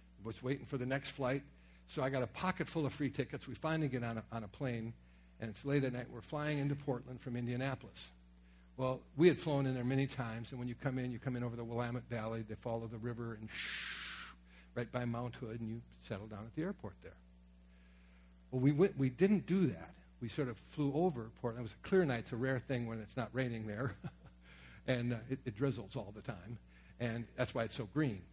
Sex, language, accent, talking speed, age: male, English, American, 235 wpm, 60-79